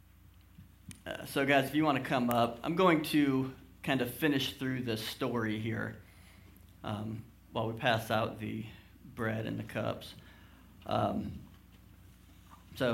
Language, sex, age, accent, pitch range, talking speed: English, male, 40-59, American, 95-135 Hz, 140 wpm